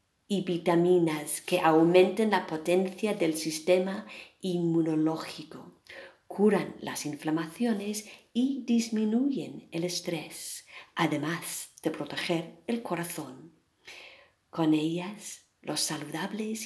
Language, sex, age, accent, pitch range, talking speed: English, female, 50-69, Spanish, 155-205 Hz, 90 wpm